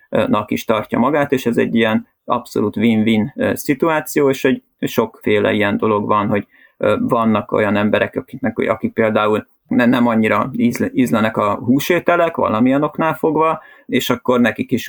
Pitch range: 115-160 Hz